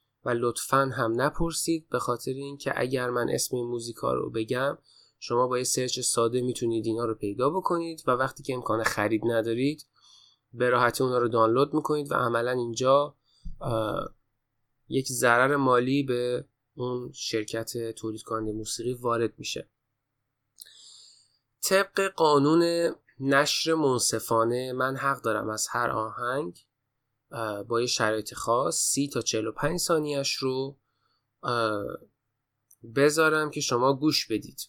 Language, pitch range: Persian, 115-140 Hz